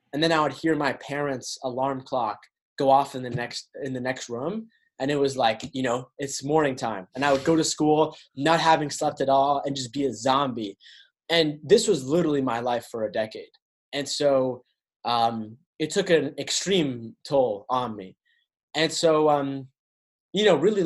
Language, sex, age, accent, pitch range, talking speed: English, male, 20-39, American, 120-155 Hz, 195 wpm